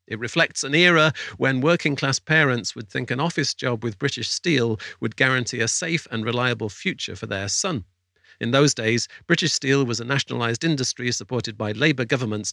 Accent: British